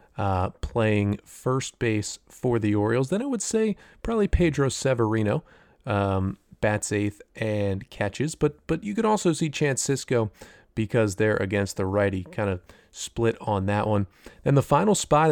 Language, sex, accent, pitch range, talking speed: English, male, American, 100-130 Hz, 165 wpm